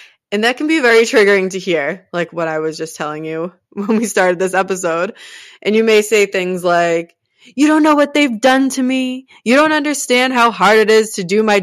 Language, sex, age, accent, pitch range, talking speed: English, female, 20-39, American, 180-225 Hz, 225 wpm